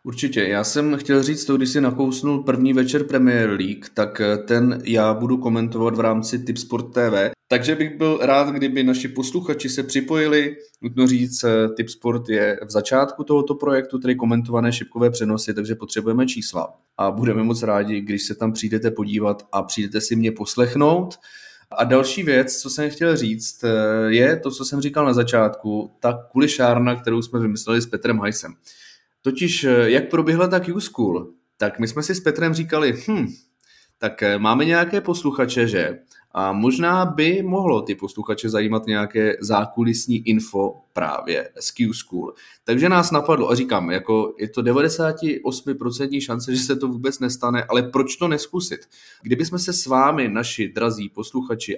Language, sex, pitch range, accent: Czech, male, 110-145 Hz, native